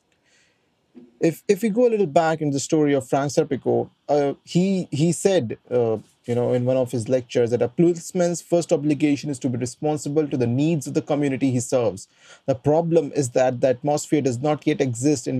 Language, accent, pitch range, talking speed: English, Indian, 125-150 Hz, 205 wpm